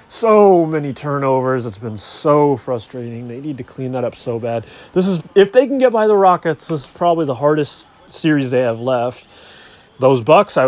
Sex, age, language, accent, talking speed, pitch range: male, 30-49, English, American, 200 wpm, 115-140 Hz